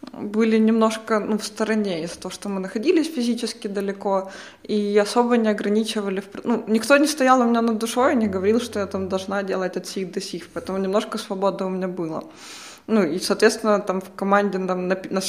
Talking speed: 200 wpm